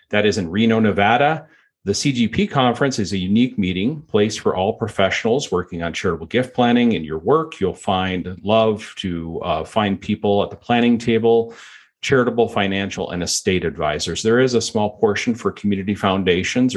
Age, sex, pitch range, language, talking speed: 40-59, male, 90-120 Hz, English, 170 wpm